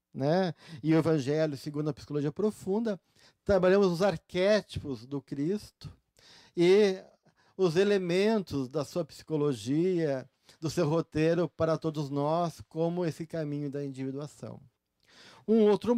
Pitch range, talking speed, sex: 145-185 Hz, 120 wpm, male